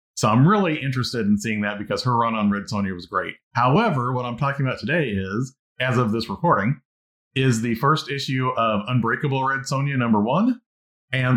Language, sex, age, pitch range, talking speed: English, male, 40-59, 105-130 Hz, 195 wpm